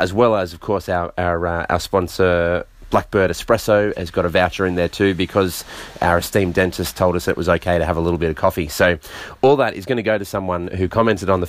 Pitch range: 95-110 Hz